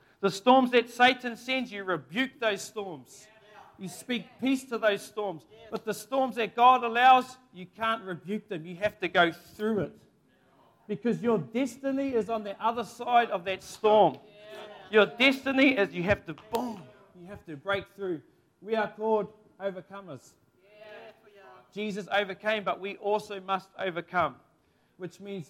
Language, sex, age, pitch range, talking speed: English, male, 40-59, 195-245 Hz, 160 wpm